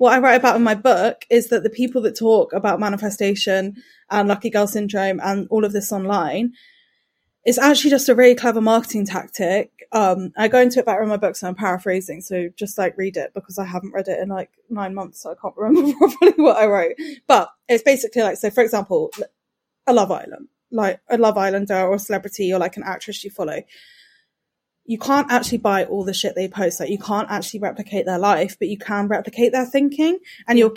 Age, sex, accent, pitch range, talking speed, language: 20-39, female, British, 195-240 Hz, 220 wpm, English